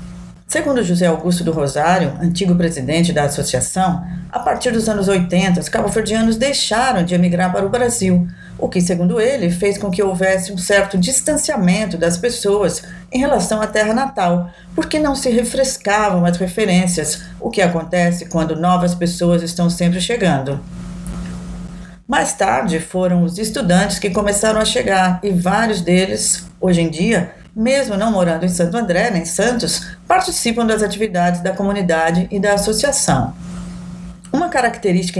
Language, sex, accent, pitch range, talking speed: Portuguese, female, Brazilian, 170-210 Hz, 150 wpm